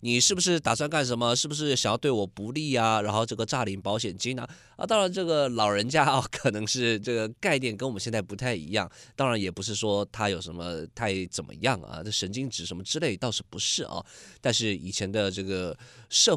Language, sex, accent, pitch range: Chinese, male, native, 100-145 Hz